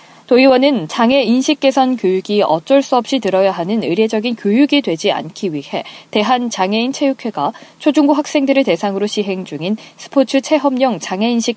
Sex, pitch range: female, 195-270 Hz